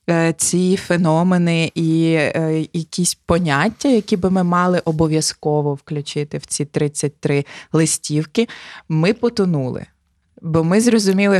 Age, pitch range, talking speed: 20-39, 155-190 Hz, 105 wpm